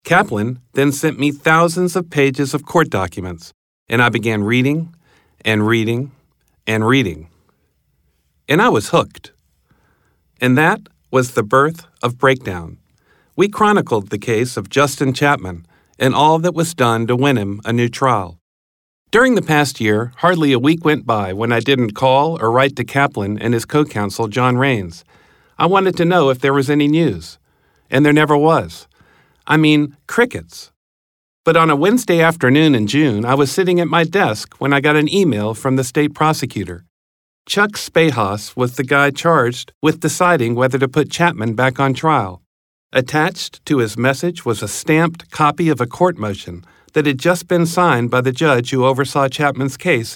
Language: English